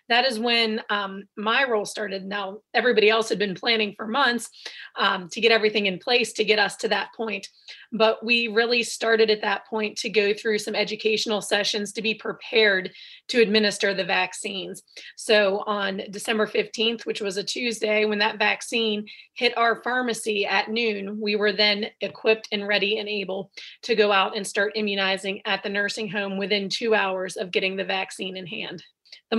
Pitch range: 205-230 Hz